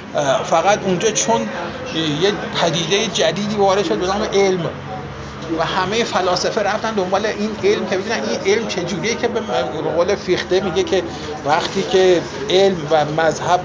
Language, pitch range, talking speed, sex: Persian, 155-200 Hz, 150 wpm, male